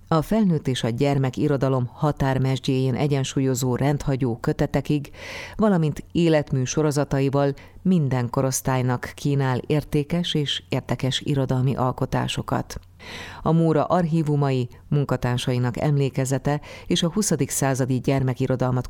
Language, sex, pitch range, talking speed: Hungarian, female, 130-145 Hz, 95 wpm